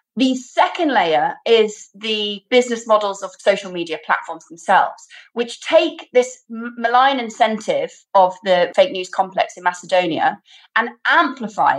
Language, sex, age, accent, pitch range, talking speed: English, female, 30-49, British, 190-250 Hz, 130 wpm